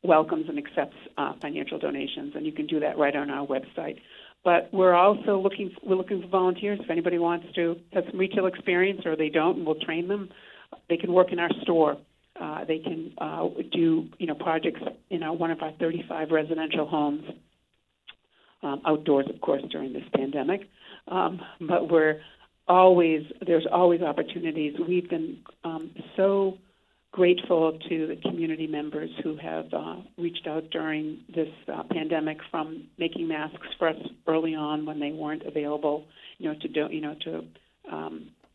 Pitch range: 155-190 Hz